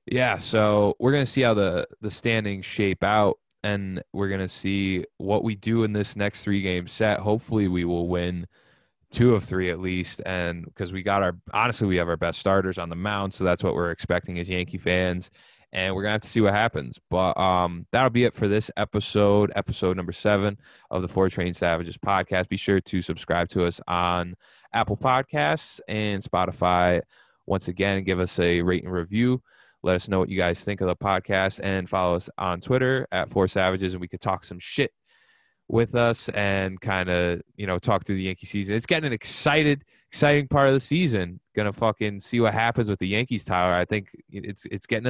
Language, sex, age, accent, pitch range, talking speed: English, male, 20-39, American, 90-115 Hz, 210 wpm